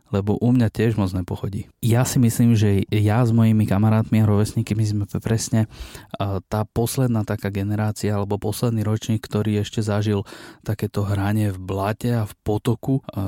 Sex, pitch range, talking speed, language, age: male, 105-120 Hz, 160 wpm, Slovak, 20-39